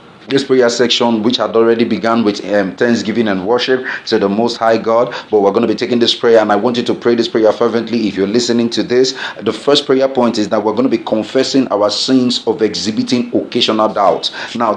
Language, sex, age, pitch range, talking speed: English, male, 30-49, 110-125 Hz, 230 wpm